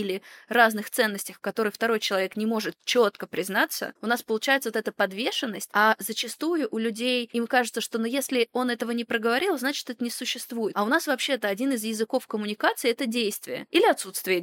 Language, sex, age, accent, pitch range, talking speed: Russian, female, 20-39, native, 210-255 Hz, 190 wpm